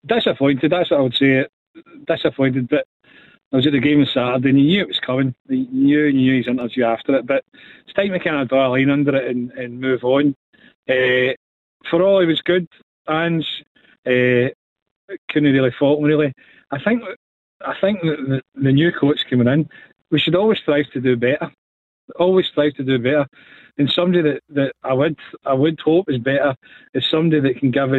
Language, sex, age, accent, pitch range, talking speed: English, male, 40-59, British, 130-160 Hz, 205 wpm